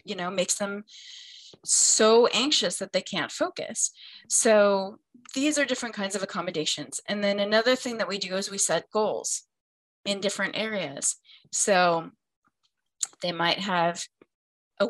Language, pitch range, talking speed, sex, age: English, 180-210 Hz, 145 wpm, female, 20-39